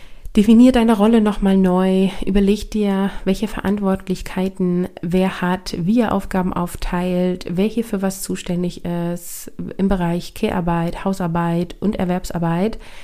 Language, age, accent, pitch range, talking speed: German, 30-49, German, 185-220 Hz, 120 wpm